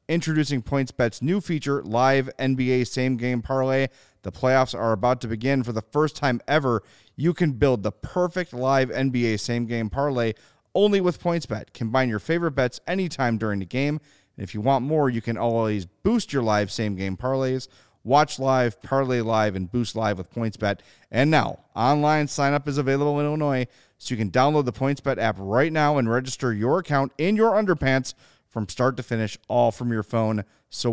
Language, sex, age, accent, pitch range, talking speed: English, male, 30-49, American, 110-140 Hz, 180 wpm